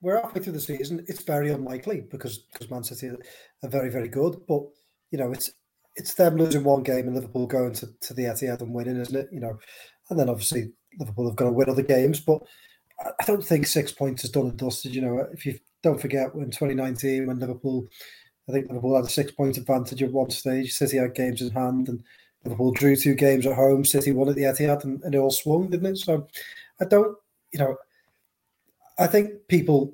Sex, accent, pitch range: male, British, 125-145 Hz